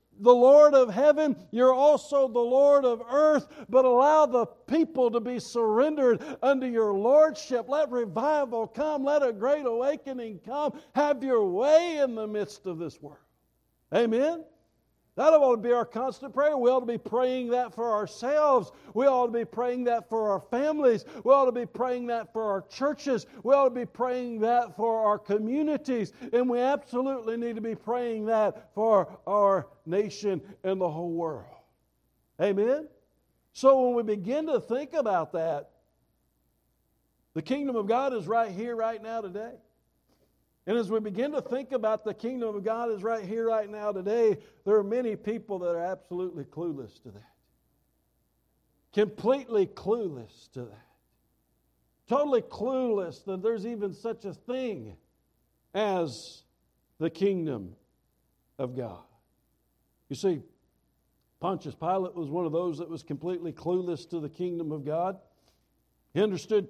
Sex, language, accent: male, English, American